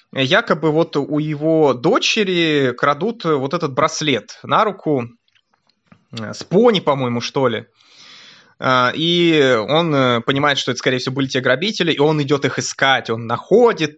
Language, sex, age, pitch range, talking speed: Russian, male, 20-39, 130-160 Hz, 140 wpm